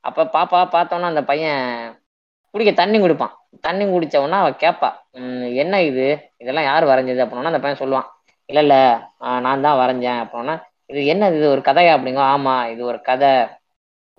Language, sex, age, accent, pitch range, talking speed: Tamil, female, 20-39, native, 130-165 Hz, 160 wpm